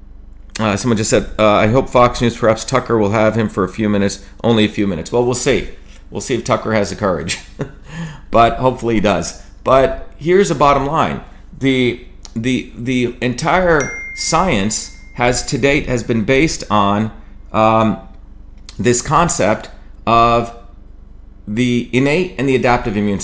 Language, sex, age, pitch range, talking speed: English, male, 40-59, 100-130 Hz, 165 wpm